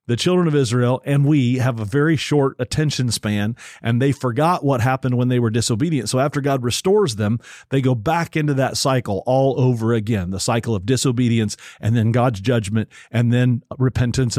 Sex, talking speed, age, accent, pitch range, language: male, 190 wpm, 40-59, American, 115-140 Hz, English